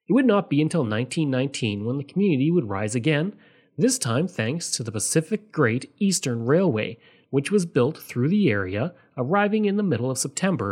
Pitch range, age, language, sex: 120-180 Hz, 30-49, English, male